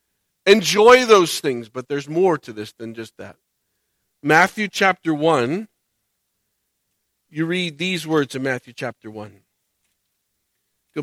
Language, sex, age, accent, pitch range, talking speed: English, male, 50-69, American, 125-200 Hz, 125 wpm